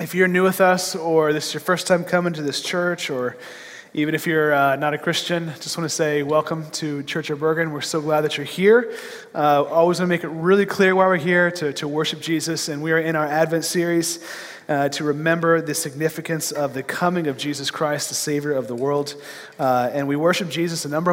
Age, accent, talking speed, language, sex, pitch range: 30-49, American, 235 wpm, English, male, 145-170 Hz